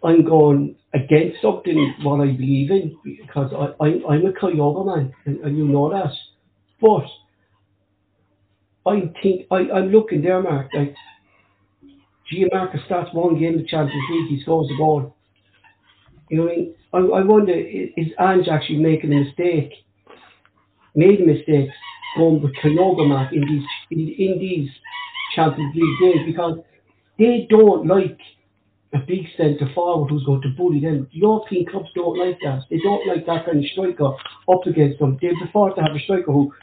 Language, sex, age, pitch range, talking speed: English, male, 60-79, 140-185 Hz, 170 wpm